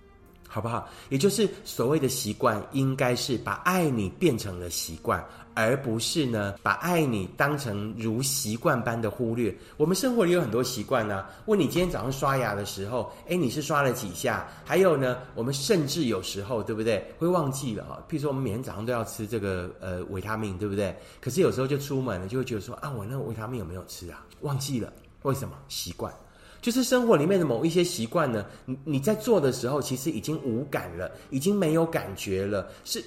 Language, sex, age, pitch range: Chinese, male, 30-49, 100-145 Hz